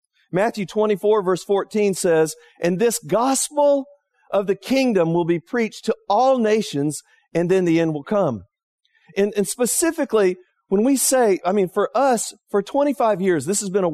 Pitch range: 175-245 Hz